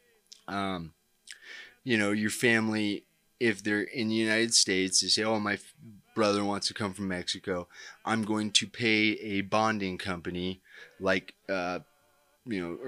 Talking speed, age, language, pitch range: 150 wpm, 30-49, English, 95-120 Hz